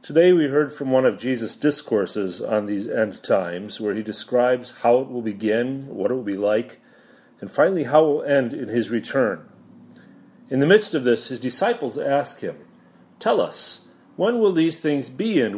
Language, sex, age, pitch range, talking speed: English, male, 40-59, 110-140 Hz, 195 wpm